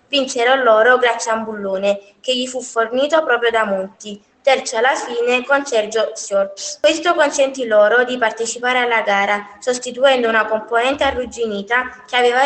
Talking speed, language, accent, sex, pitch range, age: 155 wpm, Italian, native, female, 220-270 Hz, 20-39